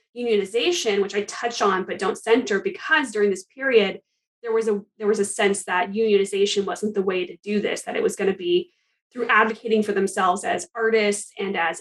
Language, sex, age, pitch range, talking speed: English, female, 20-39, 200-235 Hz, 210 wpm